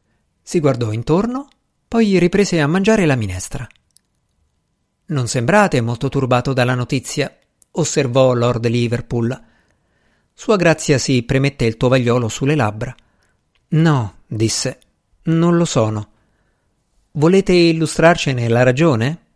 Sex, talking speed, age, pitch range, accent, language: male, 110 wpm, 50-69, 120-160 Hz, native, Italian